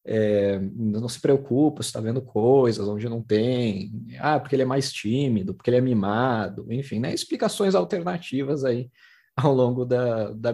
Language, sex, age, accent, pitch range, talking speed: Portuguese, male, 20-39, Brazilian, 110-140 Hz, 170 wpm